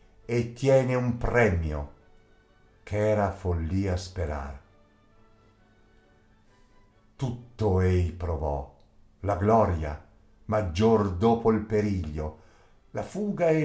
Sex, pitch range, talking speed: male, 85-110 Hz, 90 wpm